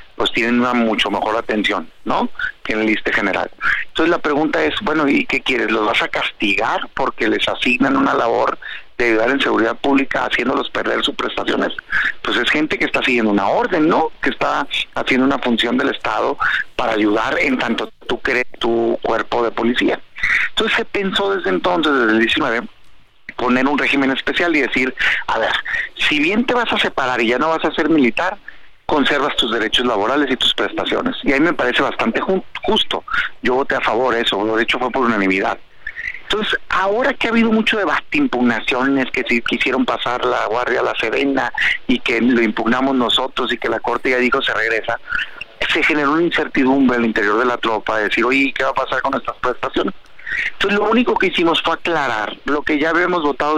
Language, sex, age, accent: Spanish, male, 40-59, Mexican